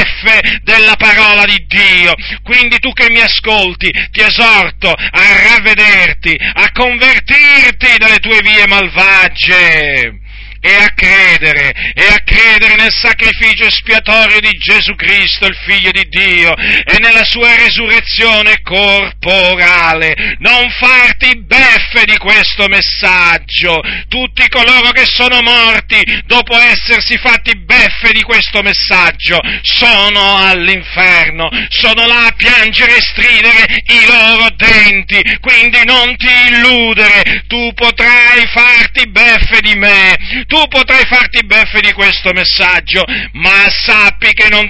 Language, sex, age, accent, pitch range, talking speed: Italian, male, 40-59, native, 200-235 Hz, 120 wpm